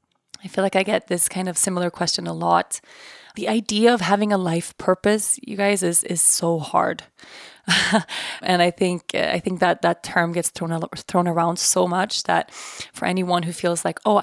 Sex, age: female, 20-39